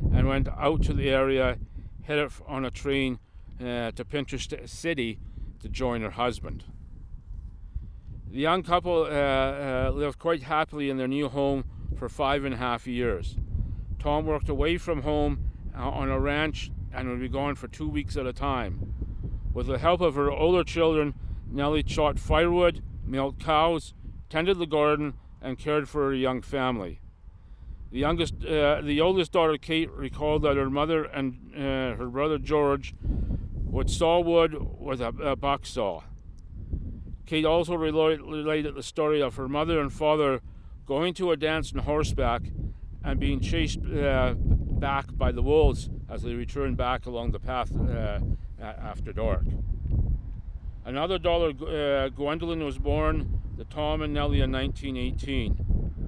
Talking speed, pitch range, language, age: 155 wpm, 105-150 Hz, English, 50-69